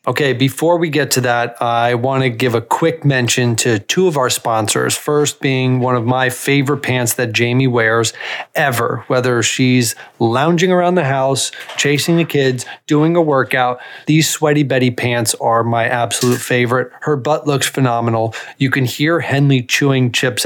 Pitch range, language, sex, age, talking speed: 125-145 Hz, English, male, 30-49, 175 wpm